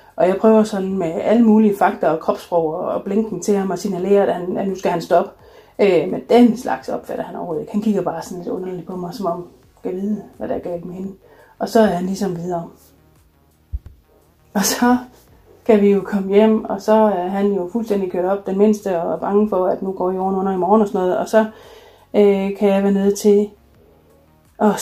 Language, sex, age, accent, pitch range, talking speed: Danish, female, 30-49, native, 185-220 Hz, 225 wpm